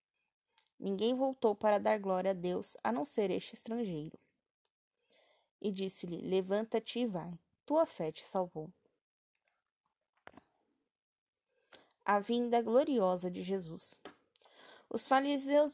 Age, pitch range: 20-39, 195-235 Hz